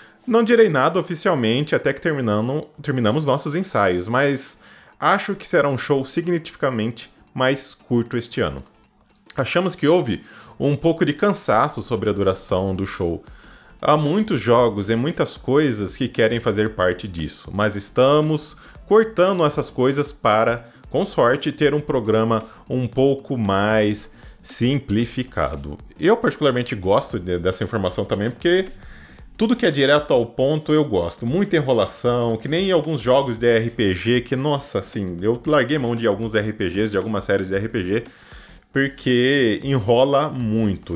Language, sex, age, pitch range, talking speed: Portuguese, male, 20-39, 105-150 Hz, 145 wpm